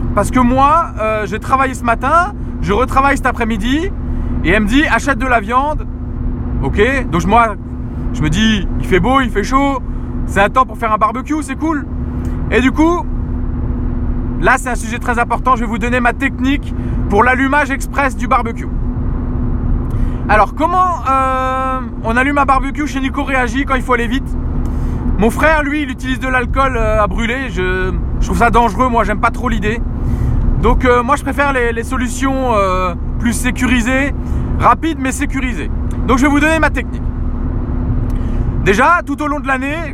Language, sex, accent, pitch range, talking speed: French, male, French, 235-285 Hz, 185 wpm